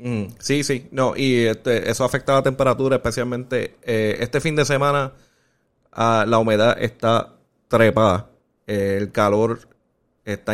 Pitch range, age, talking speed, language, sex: 105-125 Hz, 30-49, 130 wpm, Spanish, male